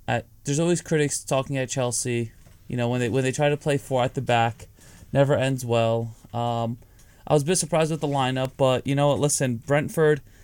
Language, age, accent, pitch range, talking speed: English, 30-49, American, 110-145 Hz, 215 wpm